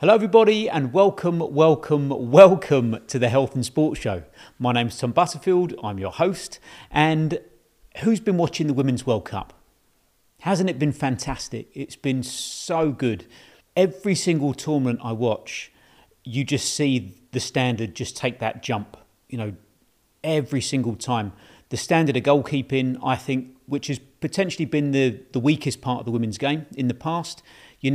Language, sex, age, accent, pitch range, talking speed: English, male, 40-59, British, 115-150 Hz, 165 wpm